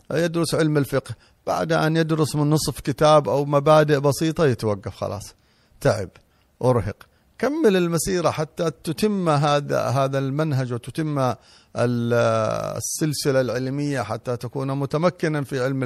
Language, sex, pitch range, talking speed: Arabic, male, 110-145 Hz, 115 wpm